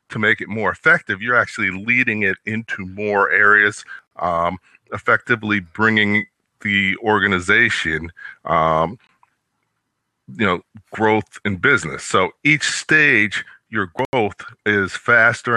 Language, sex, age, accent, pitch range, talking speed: English, male, 40-59, American, 105-135 Hz, 115 wpm